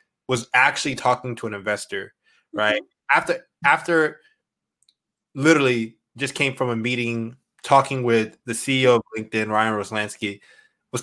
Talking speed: 130 wpm